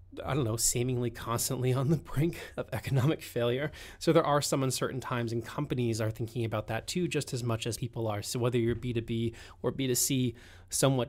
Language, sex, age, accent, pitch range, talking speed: English, male, 20-39, American, 110-130 Hz, 200 wpm